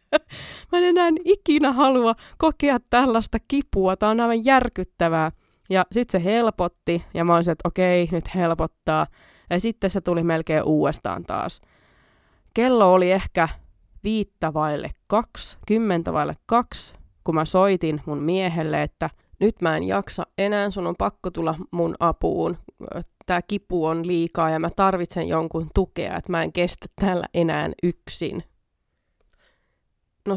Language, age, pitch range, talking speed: Finnish, 20-39, 165-210 Hz, 145 wpm